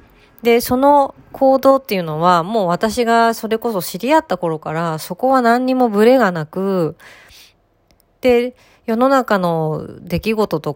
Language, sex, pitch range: Japanese, female, 160-240 Hz